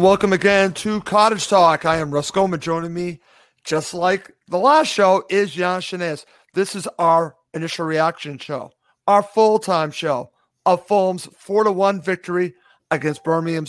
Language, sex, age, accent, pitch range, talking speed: English, male, 50-69, American, 170-205 Hz, 145 wpm